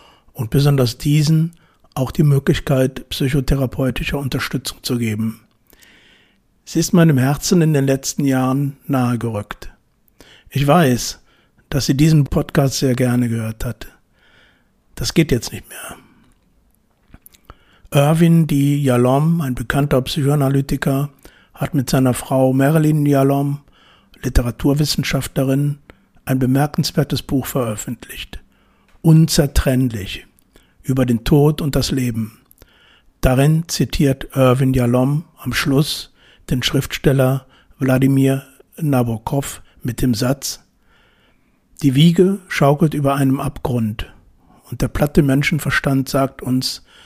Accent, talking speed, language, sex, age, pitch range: German, 105 wpm, German, male, 60-79, 125-145 Hz